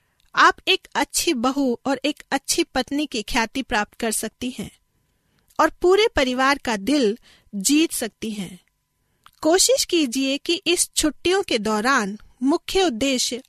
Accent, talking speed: native, 140 wpm